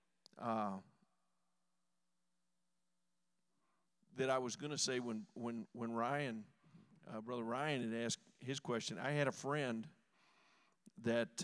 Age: 50-69